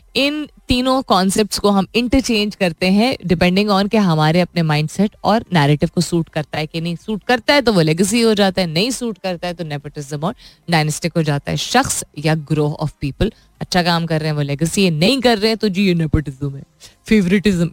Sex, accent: female, native